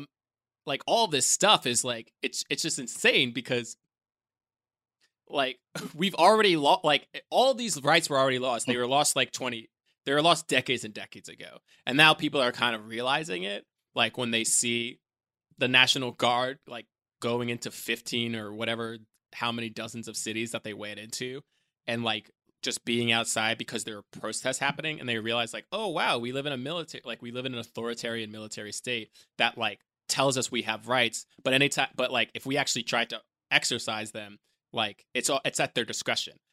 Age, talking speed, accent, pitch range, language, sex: 20-39, 195 wpm, American, 115-130 Hz, English, male